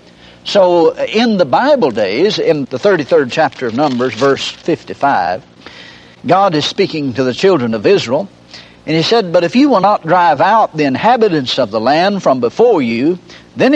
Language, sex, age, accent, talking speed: English, male, 60-79, American, 175 wpm